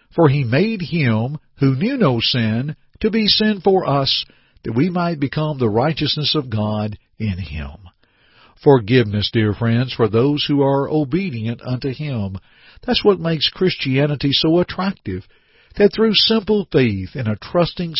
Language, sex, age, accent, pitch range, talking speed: English, male, 50-69, American, 115-165 Hz, 155 wpm